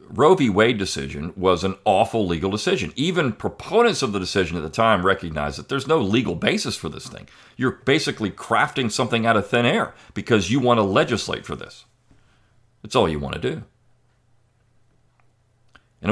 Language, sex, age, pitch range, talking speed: English, male, 50-69, 90-120 Hz, 180 wpm